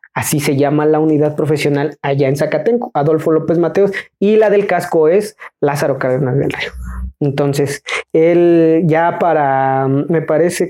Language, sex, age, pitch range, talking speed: Spanish, male, 30-49, 155-195 Hz, 150 wpm